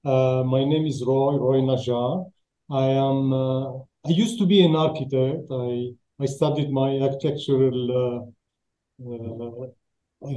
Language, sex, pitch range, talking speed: English, male, 130-155 Hz, 140 wpm